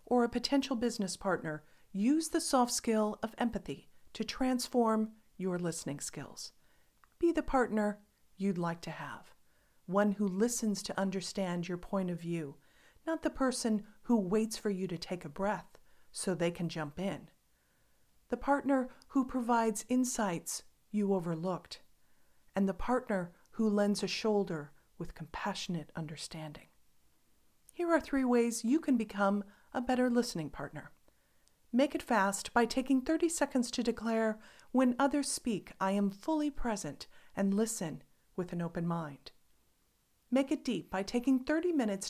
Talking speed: 150 wpm